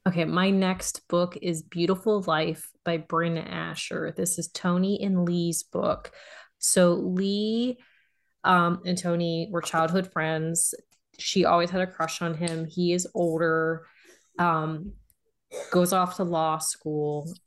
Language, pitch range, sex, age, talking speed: English, 160-180 Hz, female, 20-39, 135 wpm